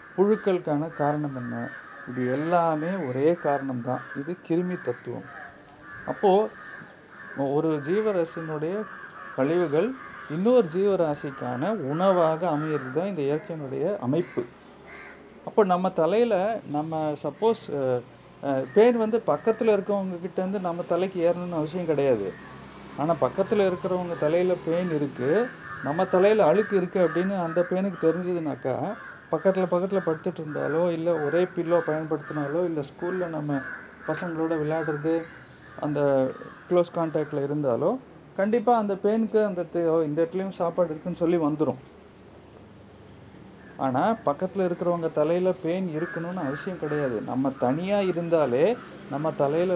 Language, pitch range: Tamil, 150-185 Hz